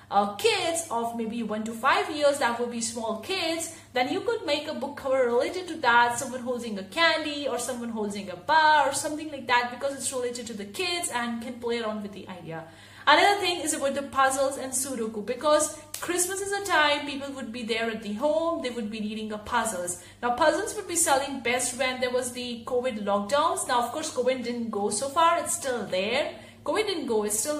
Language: English